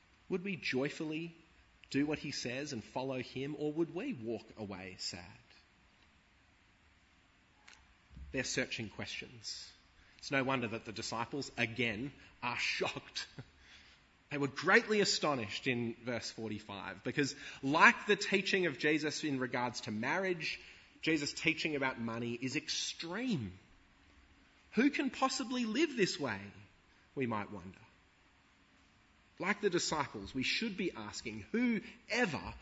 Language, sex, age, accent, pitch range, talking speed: English, male, 30-49, Australian, 95-145 Hz, 125 wpm